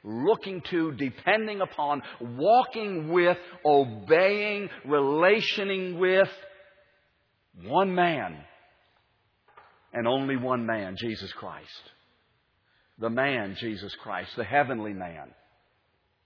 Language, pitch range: English, 115-170 Hz